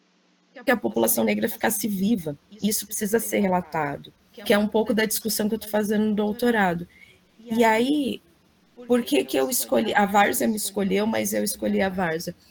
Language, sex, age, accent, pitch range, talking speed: Portuguese, female, 20-39, Brazilian, 175-225 Hz, 180 wpm